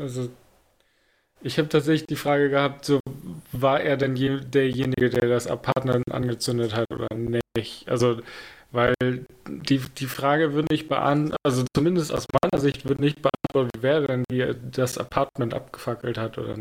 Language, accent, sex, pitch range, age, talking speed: German, German, male, 120-135 Hz, 10-29, 165 wpm